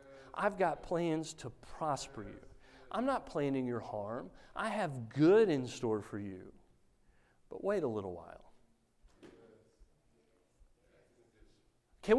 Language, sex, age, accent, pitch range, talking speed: English, male, 40-59, American, 160-235 Hz, 120 wpm